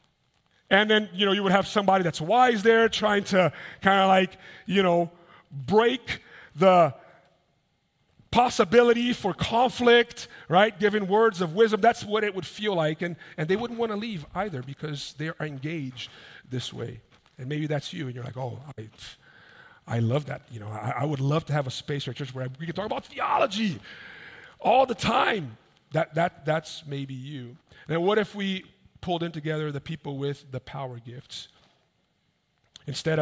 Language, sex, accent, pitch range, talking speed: English, male, American, 140-190 Hz, 180 wpm